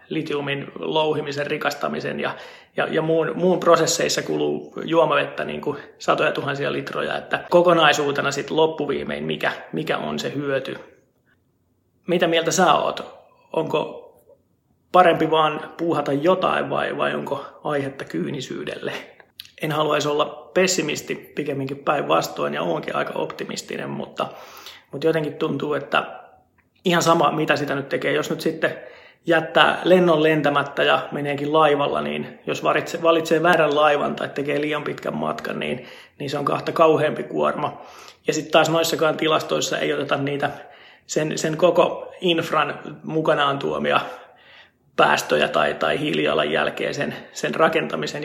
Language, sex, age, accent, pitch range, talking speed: Finnish, male, 30-49, native, 140-165 Hz, 135 wpm